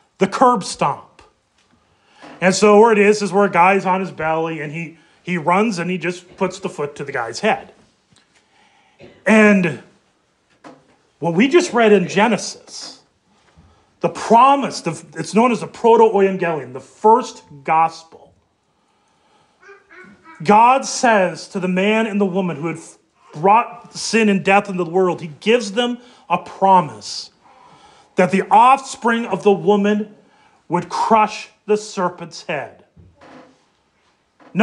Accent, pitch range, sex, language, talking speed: American, 170-225 Hz, male, English, 140 wpm